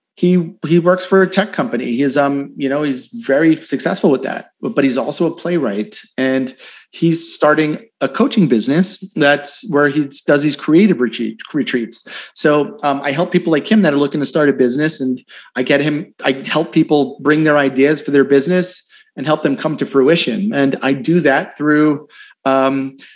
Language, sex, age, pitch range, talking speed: English, male, 30-49, 145-185 Hz, 190 wpm